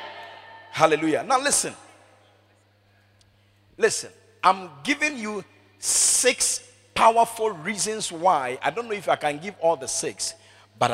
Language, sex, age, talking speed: English, male, 50-69, 120 wpm